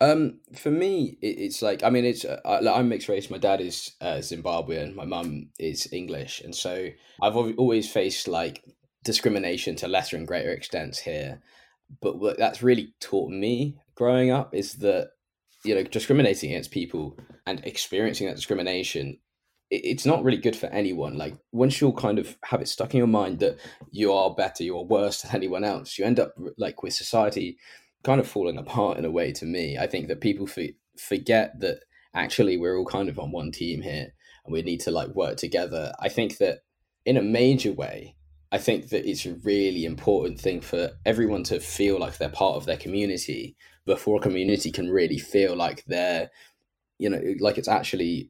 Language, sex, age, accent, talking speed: English, male, 10-29, British, 190 wpm